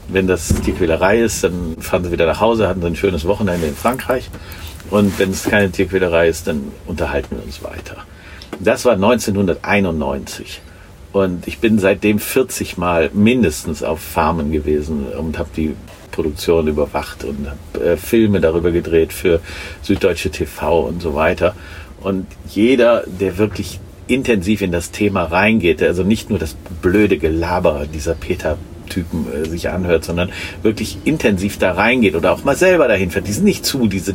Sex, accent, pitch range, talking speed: male, German, 85-110 Hz, 165 wpm